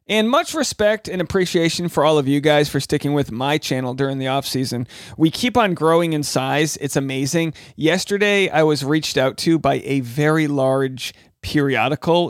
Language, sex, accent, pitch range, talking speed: English, male, American, 135-175 Hz, 185 wpm